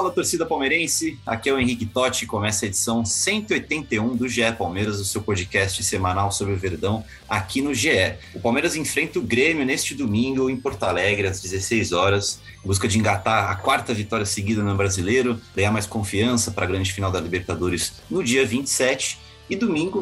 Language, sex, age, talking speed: Portuguese, male, 30-49, 185 wpm